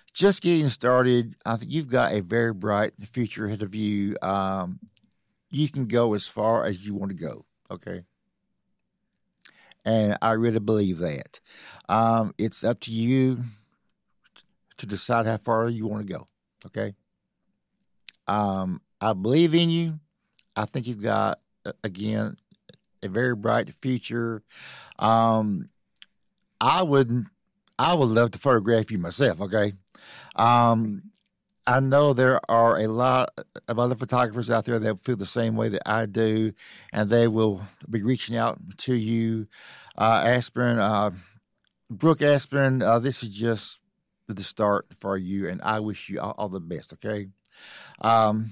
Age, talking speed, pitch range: 50-69, 150 wpm, 110-130 Hz